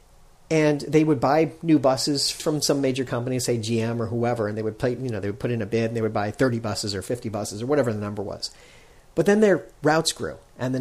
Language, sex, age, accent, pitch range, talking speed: English, male, 40-59, American, 115-150 Hz, 260 wpm